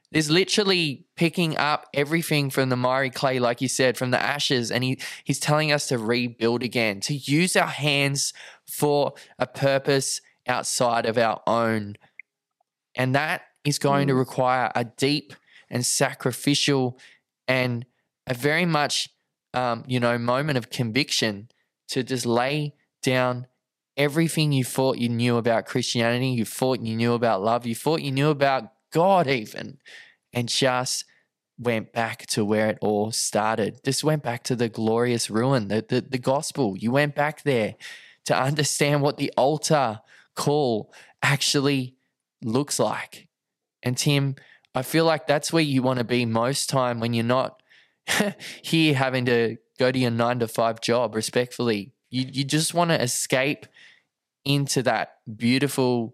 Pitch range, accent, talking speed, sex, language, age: 120-145 Hz, Australian, 155 wpm, male, English, 10-29